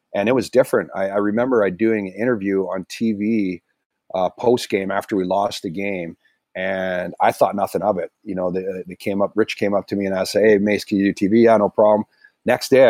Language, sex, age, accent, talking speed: English, male, 30-49, American, 240 wpm